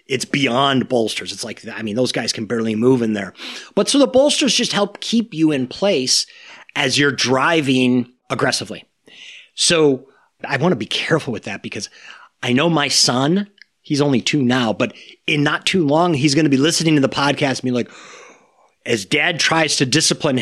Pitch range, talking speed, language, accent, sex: 125-200 Hz, 195 wpm, English, American, male